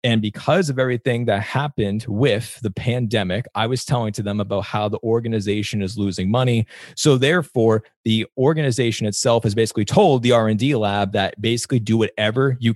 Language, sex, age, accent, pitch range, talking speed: English, male, 30-49, American, 105-145 Hz, 175 wpm